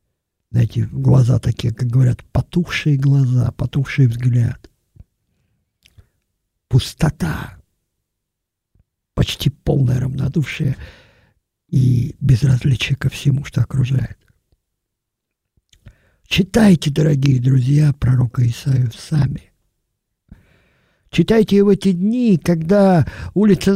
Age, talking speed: 50-69, 80 wpm